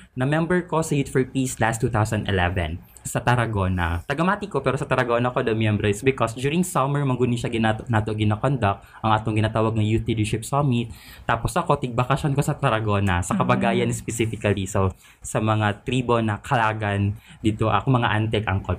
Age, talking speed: 20-39, 170 wpm